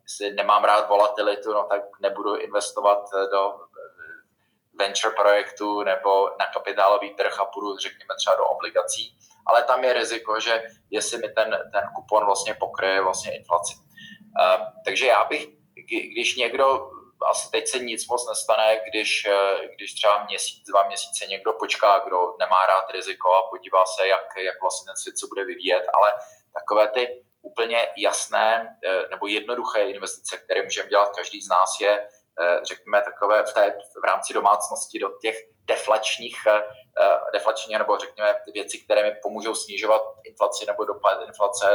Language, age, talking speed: Czech, 20-39, 155 wpm